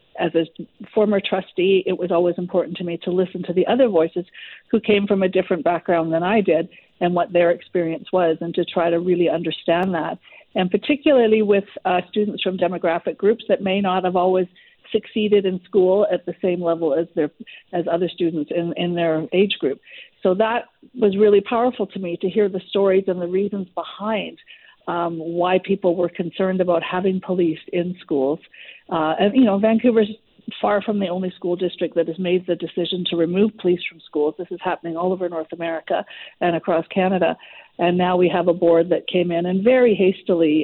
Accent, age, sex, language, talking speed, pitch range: American, 50-69, female, English, 200 wpm, 170-195 Hz